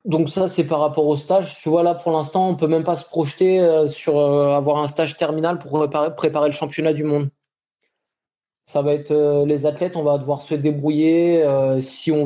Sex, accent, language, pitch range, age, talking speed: male, French, French, 135-160 Hz, 20-39, 225 wpm